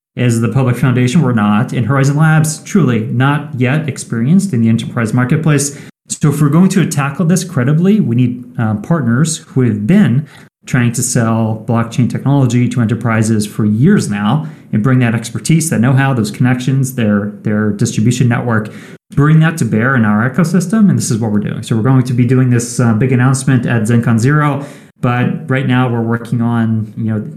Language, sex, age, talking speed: English, male, 30-49, 195 wpm